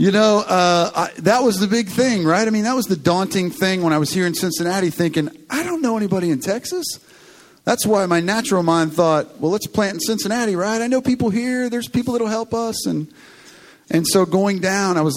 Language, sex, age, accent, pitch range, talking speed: English, male, 40-59, American, 150-195 Hz, 225 wpm